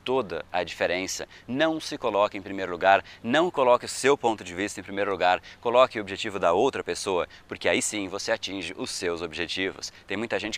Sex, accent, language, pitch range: male, Brazilian, Portuguese, 115-170 Hz